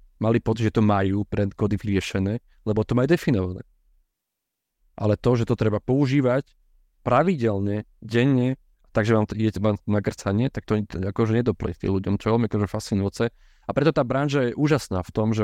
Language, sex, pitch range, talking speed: Slovak, male, 100-120 Hz, 170 wpm